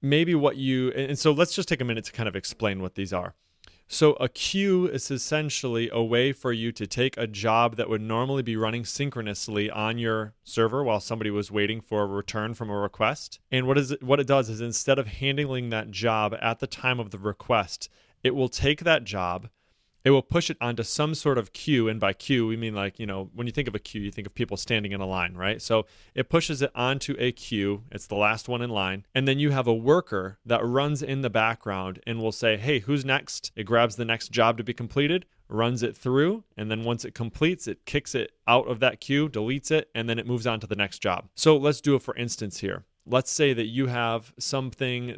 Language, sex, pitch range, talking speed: English, male, 110-135 Hz, 240 wpm